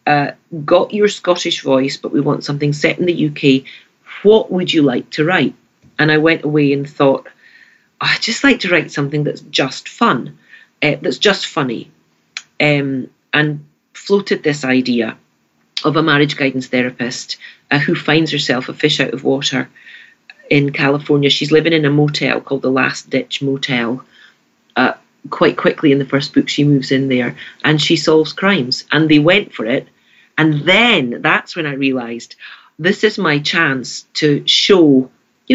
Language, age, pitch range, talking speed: English, 40-59, 135-170 Hz, 170 wpm